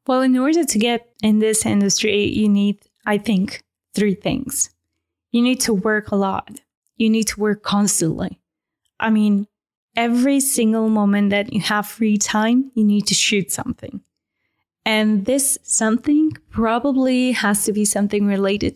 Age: 10-29